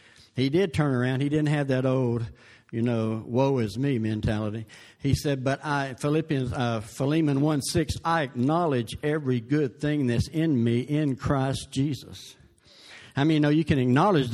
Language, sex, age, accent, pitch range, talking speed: English, male, 60-79, American, 135-165 Hz, 175 wpm